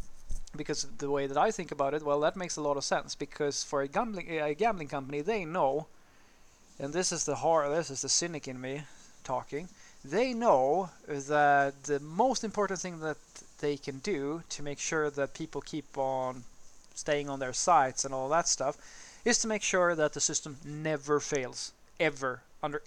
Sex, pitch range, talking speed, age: male, 140-165 Hz, 190 wpm, 30-49